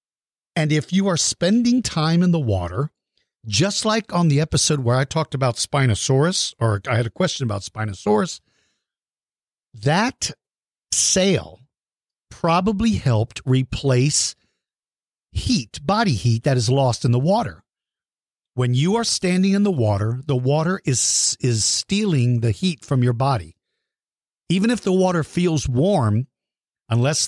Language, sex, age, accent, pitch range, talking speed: English, male, 50-69, American, 120-165 Hz, 140 wpm